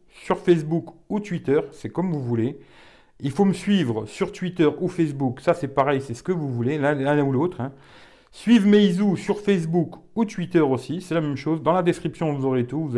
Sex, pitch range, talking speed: male, 135-170 Hz, 210 wpm